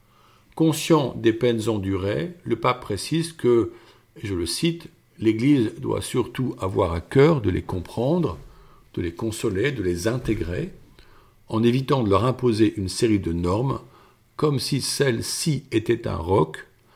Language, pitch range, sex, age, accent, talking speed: French, 95-125 Hz, male, 50-69, French, 150 wpm